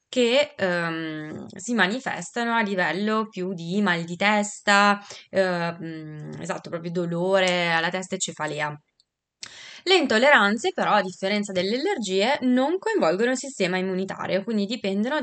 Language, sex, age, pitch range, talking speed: Italian, female, 20-39, 170-205 Hz, 130 wpm